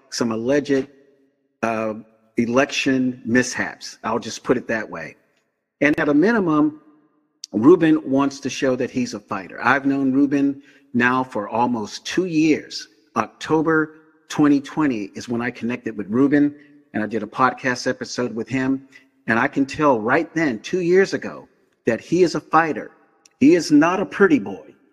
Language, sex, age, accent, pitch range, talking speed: English, male, 50-69, American, 125-150 Hz, 160 wpm